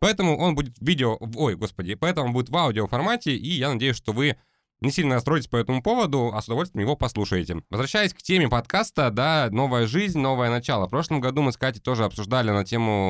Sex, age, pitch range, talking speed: male, 20-39, 105-140 Hz, 215 wpm